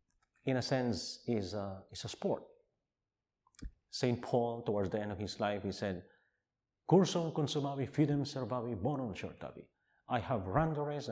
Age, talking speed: 50-69, 150 wpm